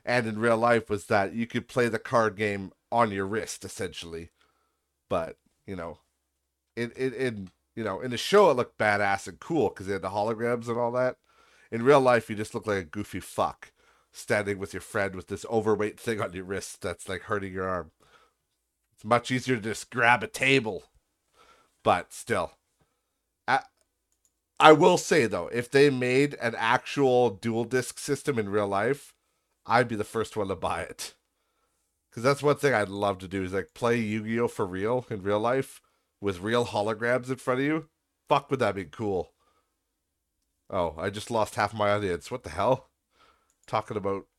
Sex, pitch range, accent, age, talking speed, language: male, 100-125 Hz, American, 40-59, 185 wpm, English